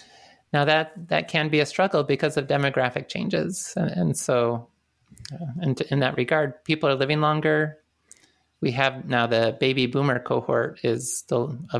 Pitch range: 120-155 Hz